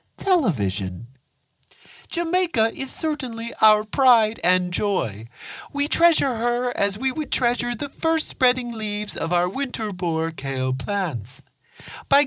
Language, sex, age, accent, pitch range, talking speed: English, male, 50-69, American, 185-290 Hz, 125 wpm